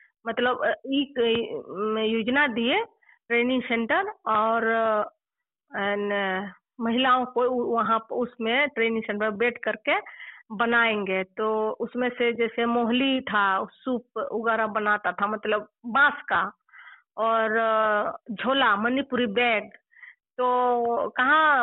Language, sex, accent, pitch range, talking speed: Telugu, female, native, 220-265 Hz, 45 wpm